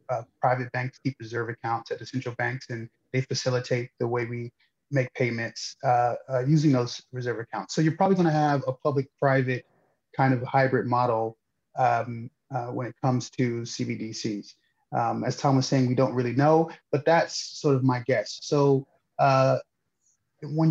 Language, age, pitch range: English, 30-49, 120-145 Hz